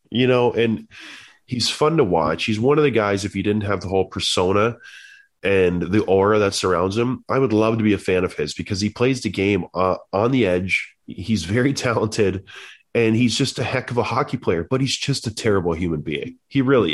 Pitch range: 95-120 Hz